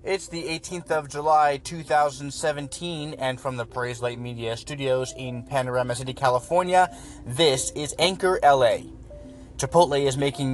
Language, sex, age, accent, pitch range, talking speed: English, male, 20-39, American, 125-150 Hz, 135 wpm